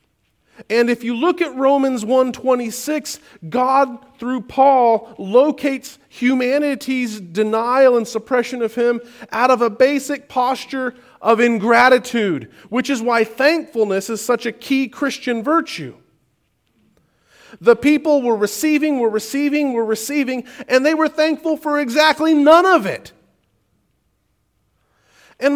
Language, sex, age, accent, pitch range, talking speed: English, male, 40-59, American, 185-275 Hz, 125 wpm